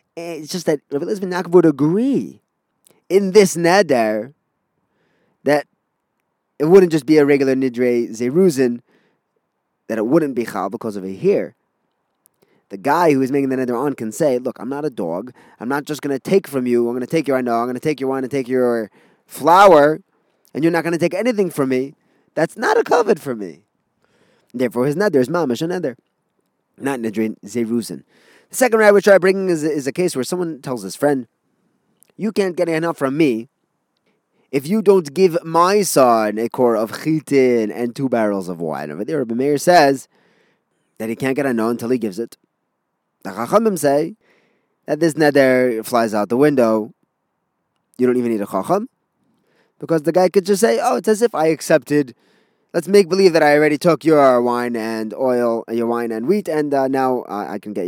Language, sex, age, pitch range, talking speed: English, male, 20-39, 120-175 Hz, 200 wpm